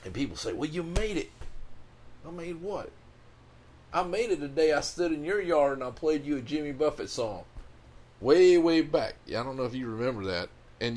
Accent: American